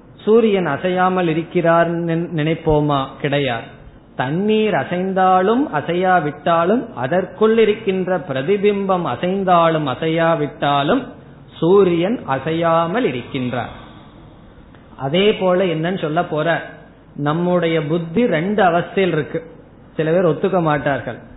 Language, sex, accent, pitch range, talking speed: Tamil, male, native, 150-195 Hz, 85 wpm